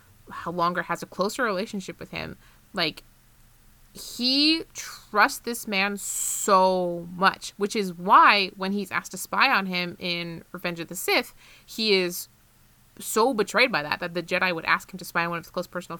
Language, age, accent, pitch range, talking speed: English, 20-39, American, 175-215 Hz, 185 wpm